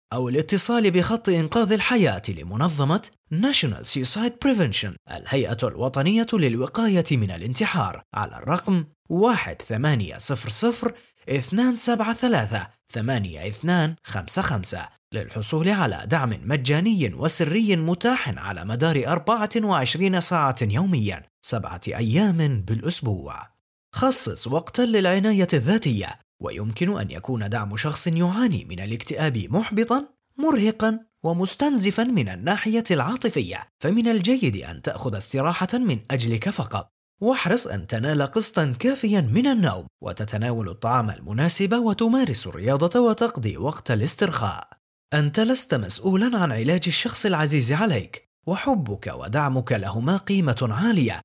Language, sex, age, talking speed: English, male, 30-49, 95 wpm